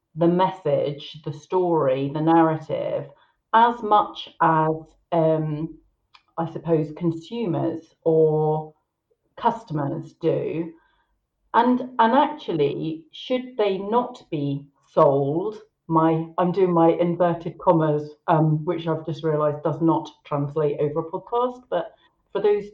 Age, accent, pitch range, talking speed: 40-59, British, 155-195 Hz, 115 wpm